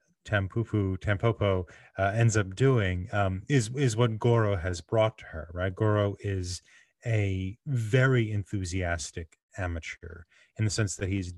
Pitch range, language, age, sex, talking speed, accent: 90-115 Hz, English, 30-49, male, 135 wpm, American